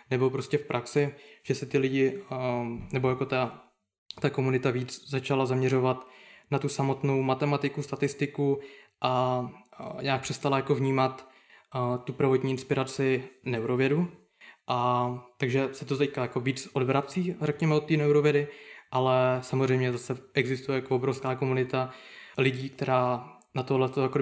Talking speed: 135 wpm